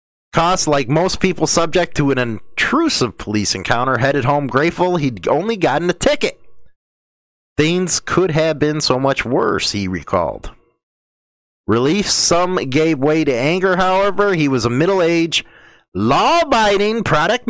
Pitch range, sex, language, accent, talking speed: 120-185 Hz, male, English, American, 135 wpm